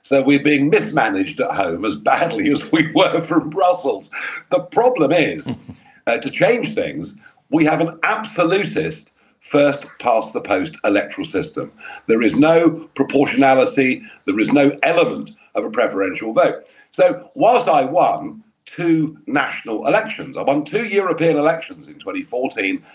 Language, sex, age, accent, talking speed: English, male, 50-69, British, 140 wpm